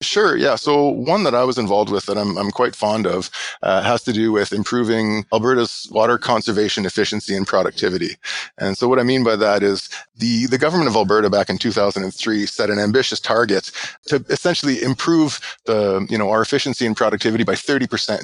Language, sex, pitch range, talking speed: English, male, 100-115 Hz, 195 wpm